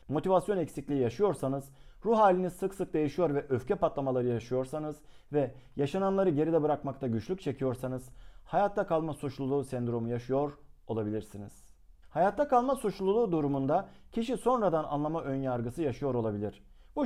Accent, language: native, Turkish